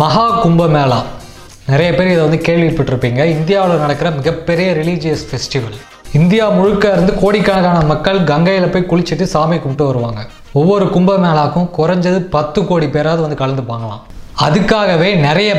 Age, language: 20-39, Tamil